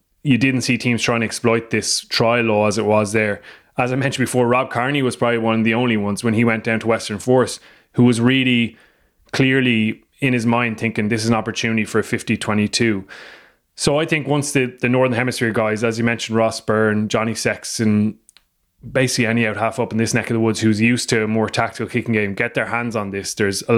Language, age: English, 20-39